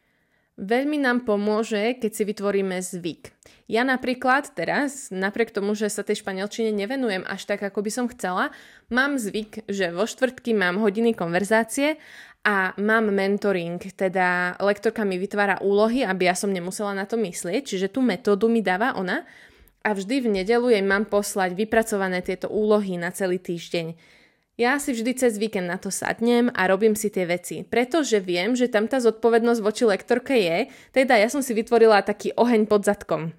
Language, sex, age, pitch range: Slovak, female, 20-39, 195-235 Hz